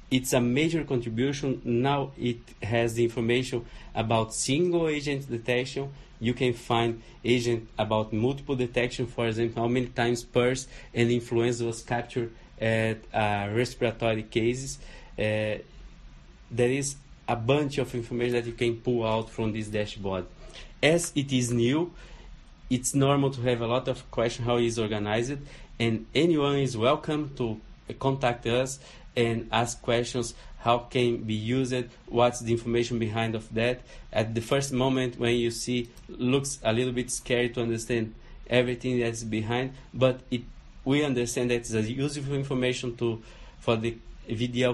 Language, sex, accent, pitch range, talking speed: English, male, Brazilian, 115-130 Hz, 155 wpm